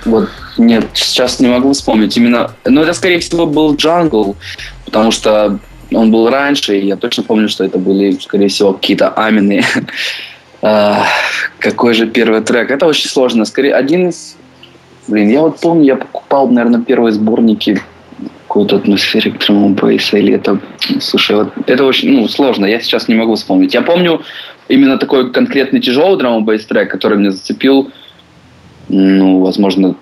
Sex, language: male, Russian